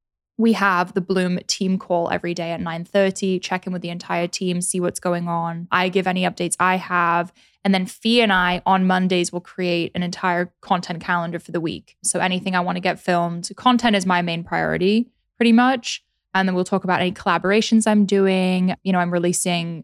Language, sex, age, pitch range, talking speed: English, female, 10-29, 175-200 Hz, 210 wpm